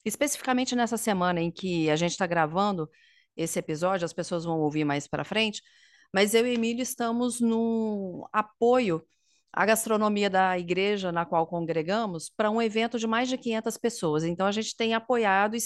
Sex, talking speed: female, 180 wpm